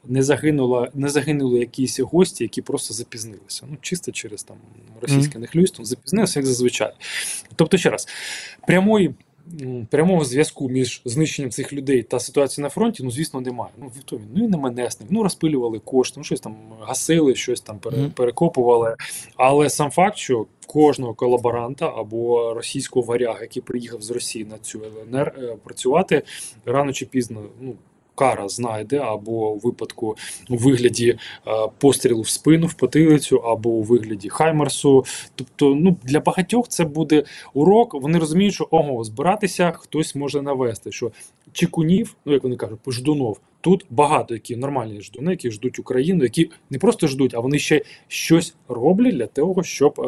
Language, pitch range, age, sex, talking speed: Ukrainian, 120-155 Hz, 20-39, male, 155 wpm